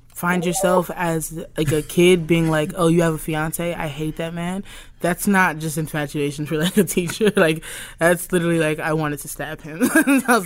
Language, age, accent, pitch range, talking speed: English, 20-39, American, 155-180 Hz, 205 wpm